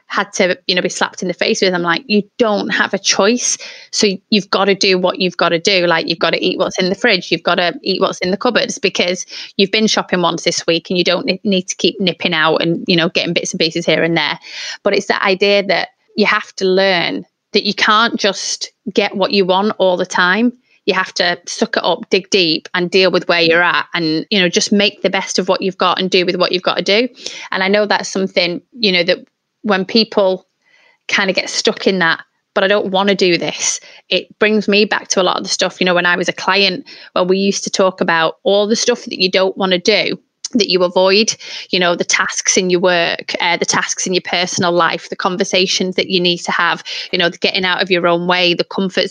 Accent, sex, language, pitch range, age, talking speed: British, female, English, 180-210 Hz, 30-49, 260 wpm